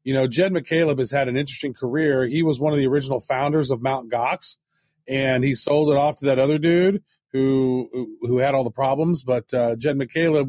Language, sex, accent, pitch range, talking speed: English, male, American, 130-155 Hz, 215 wpm